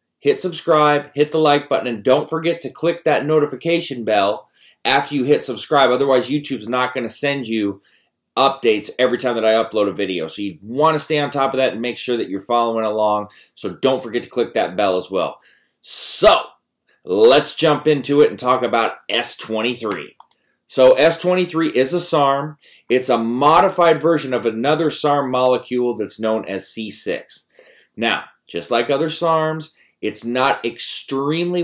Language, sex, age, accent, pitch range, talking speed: English, male, 30-49, American, 110-150 Hz, 170 wpm